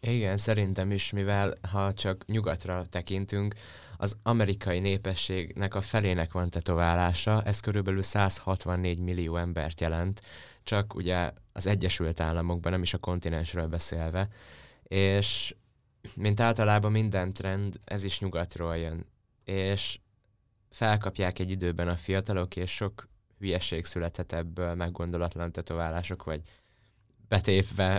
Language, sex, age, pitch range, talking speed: Hungarian, male, 20-39, 90-105 Hz, 120 wpm